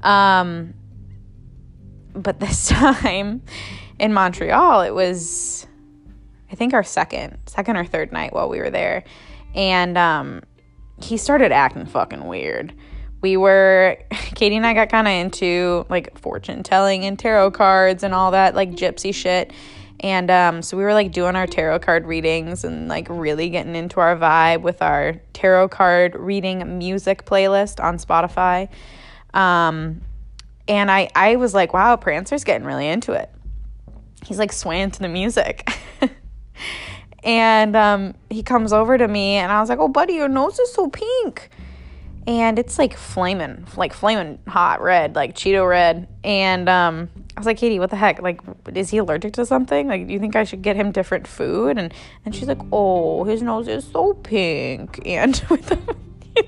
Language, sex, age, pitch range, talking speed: English, female, 10-29, 170-210 Hz, 170 wpm